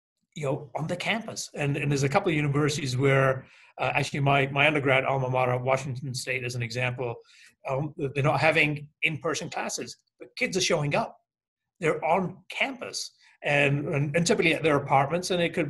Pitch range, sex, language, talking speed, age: 130-160 Hz, male, English, 185 wpm, 40-59